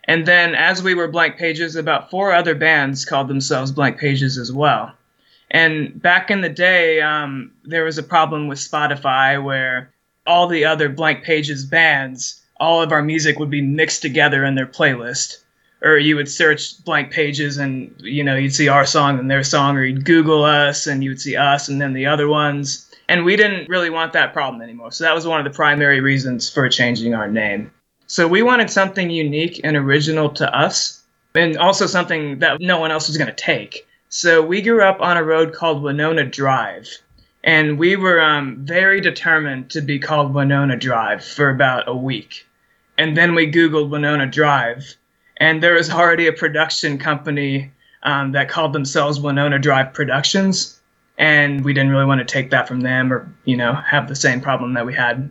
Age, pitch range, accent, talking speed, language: 20-39, 135-165 Hz, American, 195 wpm, English